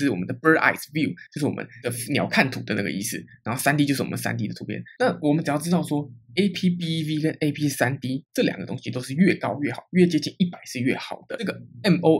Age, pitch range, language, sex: 20-39, 130-165 Hz, Chinese, male